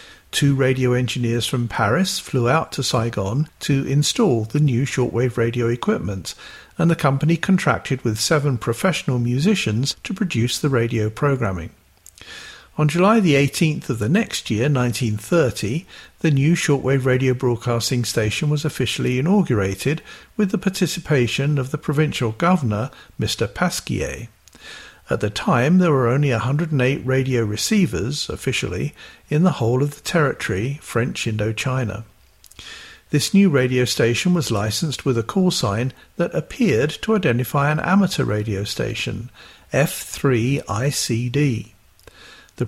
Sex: male